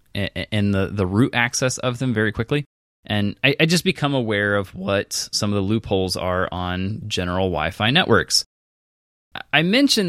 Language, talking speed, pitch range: English, 155 wpm, 100-135 Hz